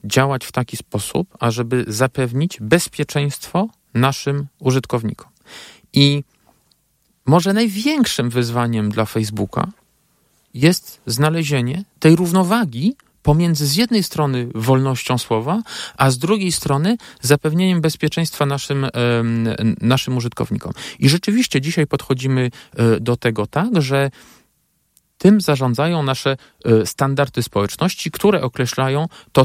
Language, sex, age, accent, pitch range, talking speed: Polish, male, 40-59, native, 120-165 Hz, 105 wpm